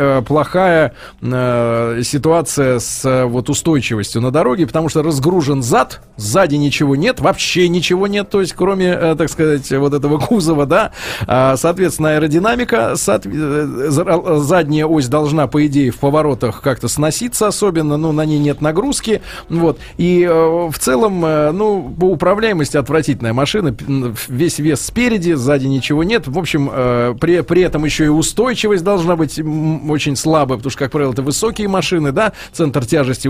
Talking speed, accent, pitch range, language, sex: 155 wpm, native, 140-175 Hz, Russian, male